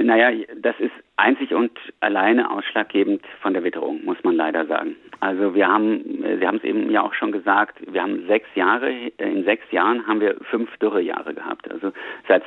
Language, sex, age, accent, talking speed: German, male, 50-69, German, 190 wpm